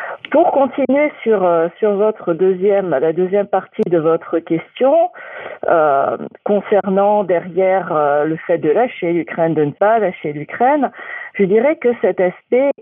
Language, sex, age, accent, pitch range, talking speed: French, female, 50-69, French, 175-230 Hz, 145 wpm